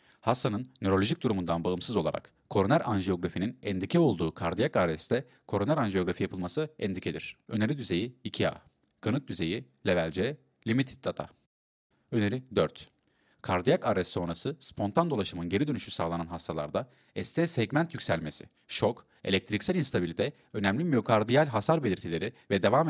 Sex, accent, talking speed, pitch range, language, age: male, native, 125 wpm, 85-130 Hz, Turkish, 40-59